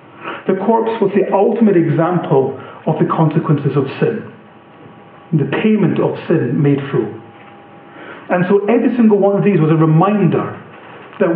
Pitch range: 155-200 Hz